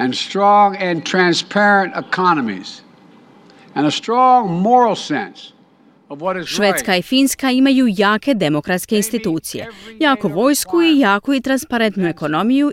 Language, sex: Croatian, female